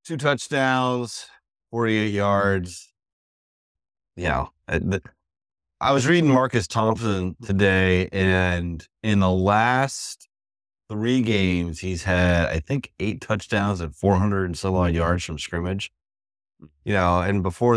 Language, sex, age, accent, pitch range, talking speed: English, male, 30-49, American, 80-100 Hz, 130 wpm